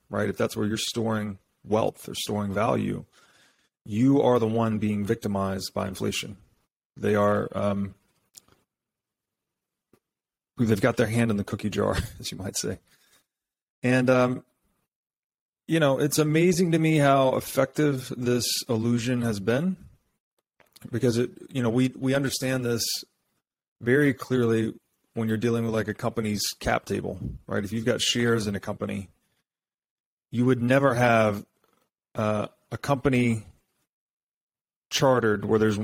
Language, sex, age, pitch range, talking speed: English, male, 30-49, 105-120 Hz, 140 wpm